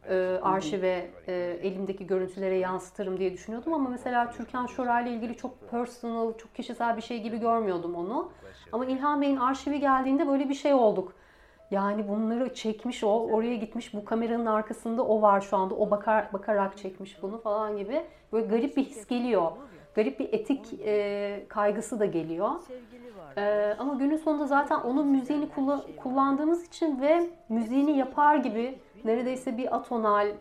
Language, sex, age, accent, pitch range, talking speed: Turkish, female, 30-49, native, 195-250 Hz, 145 wpm